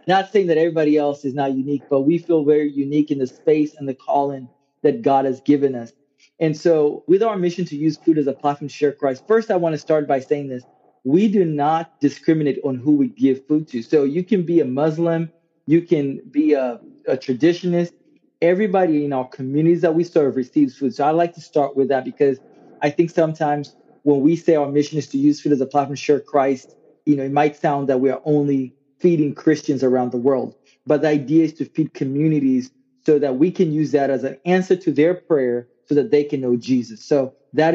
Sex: male